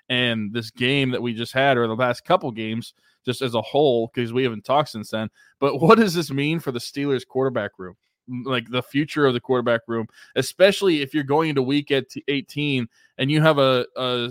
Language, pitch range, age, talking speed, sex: English, 125-150 Hz, 20-39, 220 wpm, male